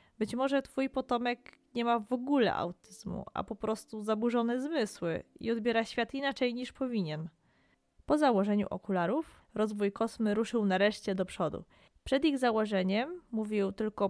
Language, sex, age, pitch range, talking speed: Polish, female, 20-39, 190-240 Hz, 145 wpm